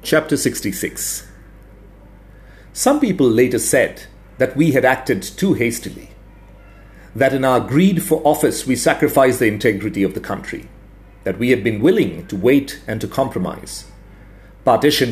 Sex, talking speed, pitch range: male, 145 wpm, 100-145 Hz